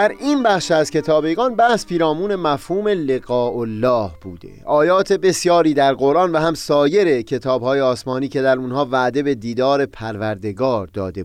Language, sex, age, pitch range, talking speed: Persian, male, 30-49, 125-190 Hz, 150 wpm